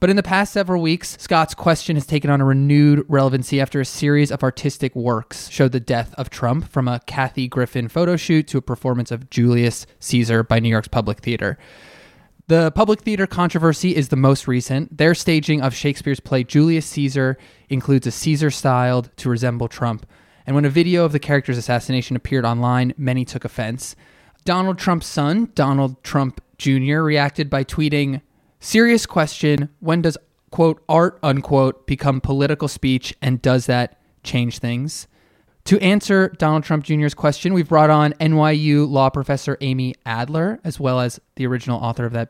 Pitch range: 125-155 Hz